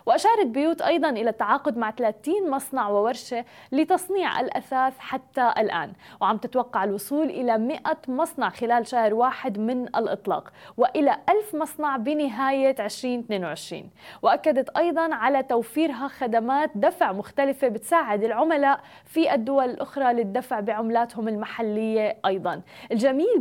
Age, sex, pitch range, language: 20-39, female, 230-290 Hz, Arabic